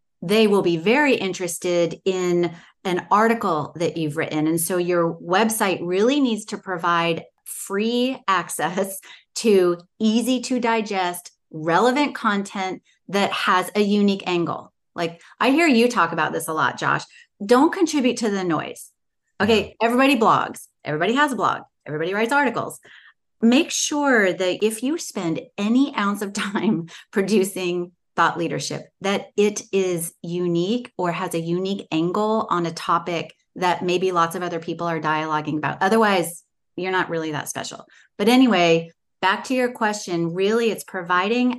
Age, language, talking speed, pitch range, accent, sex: 30-49, English, 155 wpm, 175-220 Hz, American, female